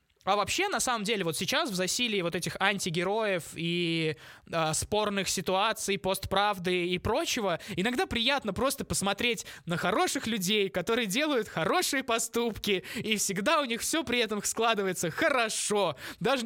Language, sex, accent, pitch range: Russian, male, native, 175-225 Hz